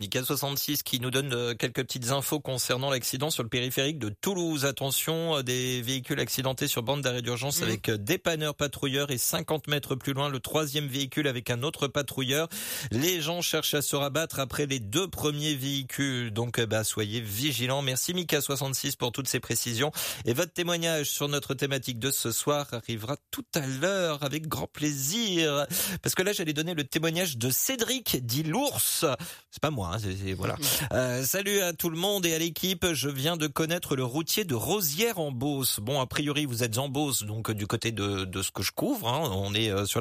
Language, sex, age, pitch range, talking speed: French, male, 30-49, 125-160 Hz, 190 wpm